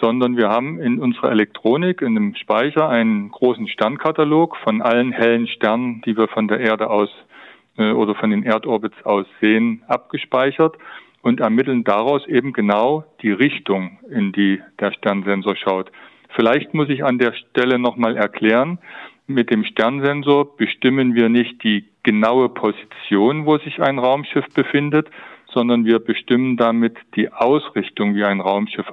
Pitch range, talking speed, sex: 105-130 Hz, 150 wpm, male